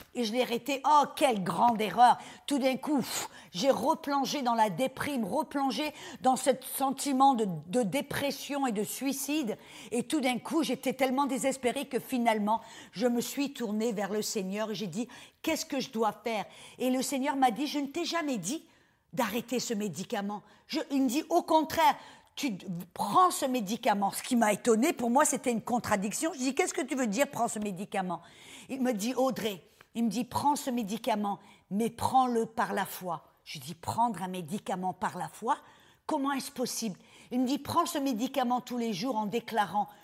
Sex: female